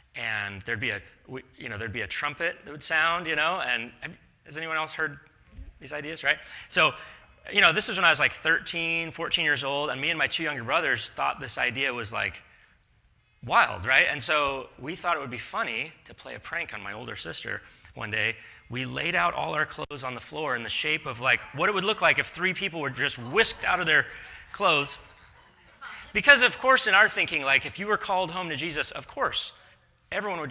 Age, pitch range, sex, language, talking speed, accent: 30-49, 125-170 Hz, male, English, 225 wpm, American